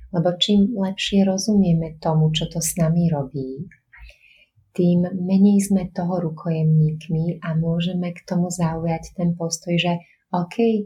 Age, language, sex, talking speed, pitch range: 30-49, Slovak, female, 135 wpm, 155-175 Hz